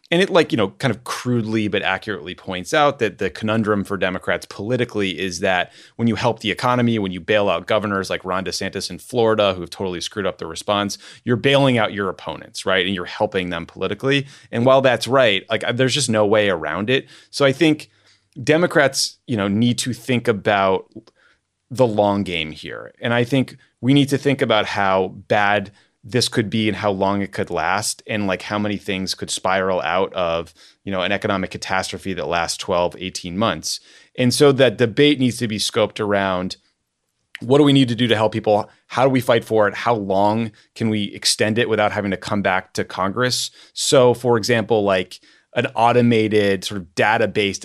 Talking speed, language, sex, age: 205 wpm, English, male, 30-49